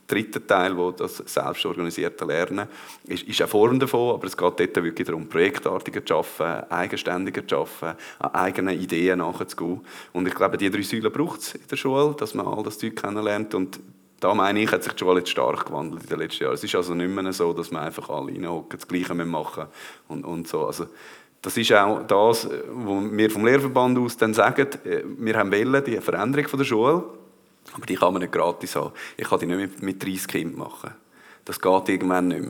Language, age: German, 30-49